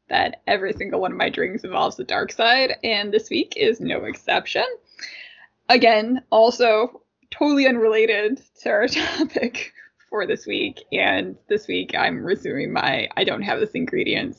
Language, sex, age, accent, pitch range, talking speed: English, female, 10-29, American, 215-315 Hz, 160 wpm